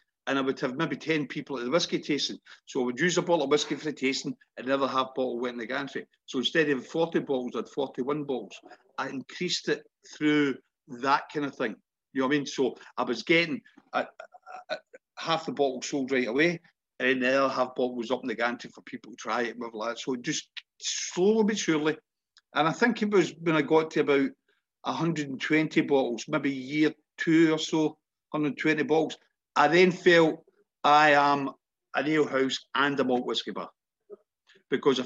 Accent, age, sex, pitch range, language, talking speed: British, 50-69, male, 130-155 Hz, English, 205 wpm